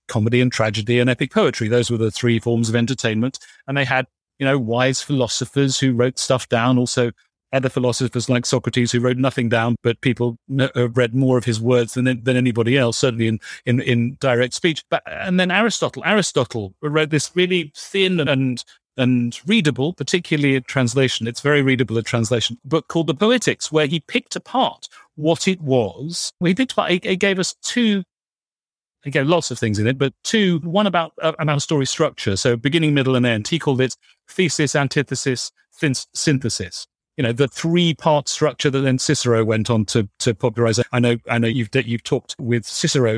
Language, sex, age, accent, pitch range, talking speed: English, male, 40-59, British, 120-155 Hz, 195 wpm